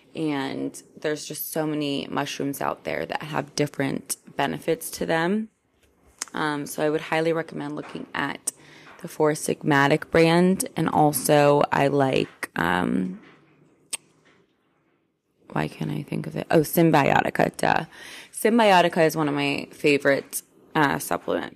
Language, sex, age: English, female, 20-39